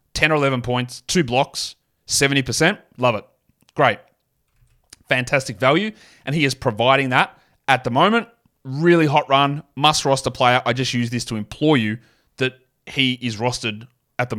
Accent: Australian